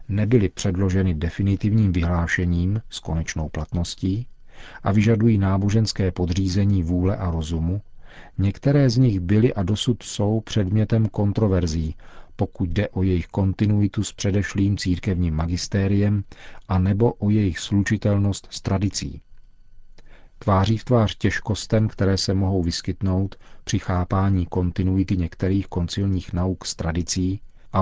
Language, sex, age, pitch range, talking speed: Czech, male, 40-59, 90-105 Hz, 120 wpm